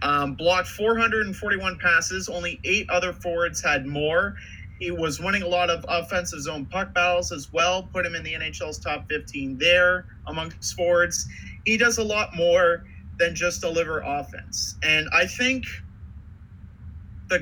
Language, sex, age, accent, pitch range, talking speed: English, male, 30-49, American, 130-190 Hz, 155 wpm